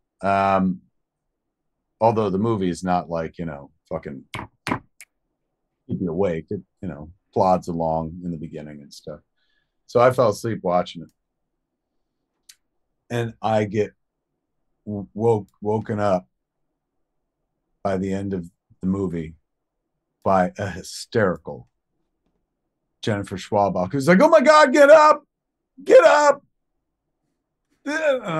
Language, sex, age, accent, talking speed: English, male, 40-59, American, 120 wpm